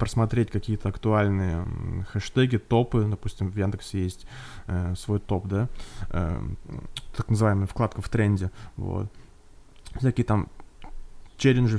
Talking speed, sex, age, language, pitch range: 120 wpm, male, 20-39, Russian, 100-125 Hz